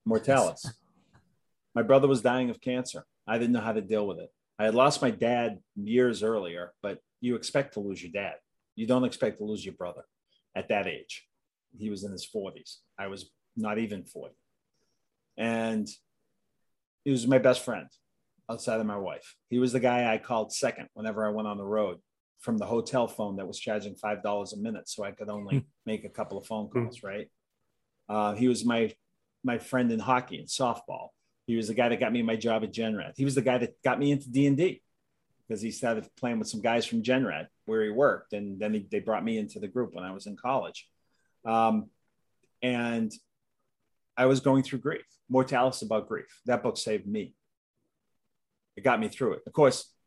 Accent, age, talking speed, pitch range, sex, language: American, 40-59, 205 wpm, 105-130 Hz, male, English